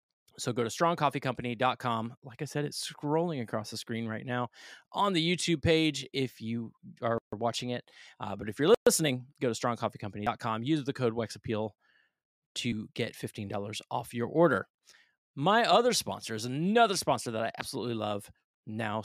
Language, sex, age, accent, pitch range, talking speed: English, male, 30-49, American, 115-150 Hz, 165 wpm